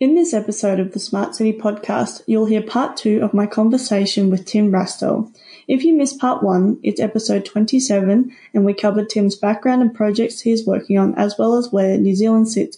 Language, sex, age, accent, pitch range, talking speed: English, female, 20-39, Australian, 205-245 Hz, 205 wpm